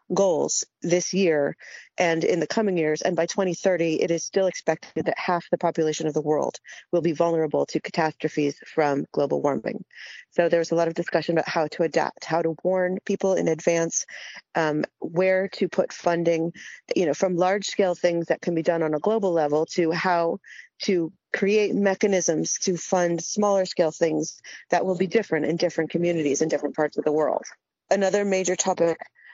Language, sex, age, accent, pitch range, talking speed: English, female, 40-59, American, 165-190 Hz, 185 wpm